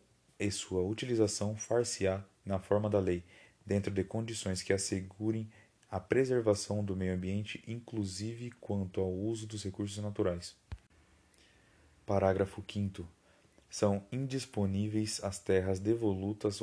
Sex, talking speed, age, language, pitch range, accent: male, 115 wpm, 20-39, Portuguese, 95-110 Hz, Brazilian